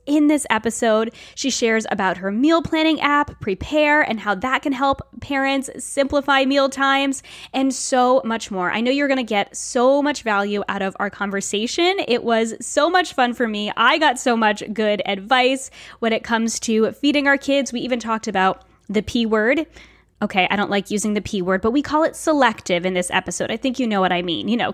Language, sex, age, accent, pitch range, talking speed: English, female, 10-29, American, 220-300 Hz, 215 wpm